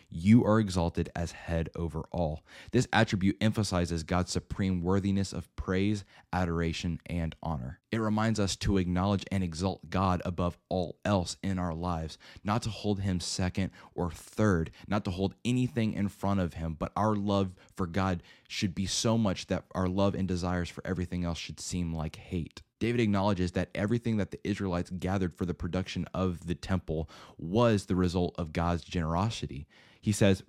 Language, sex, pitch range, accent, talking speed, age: English, male, 85-100 Hz, American, 175 wpm, 20-39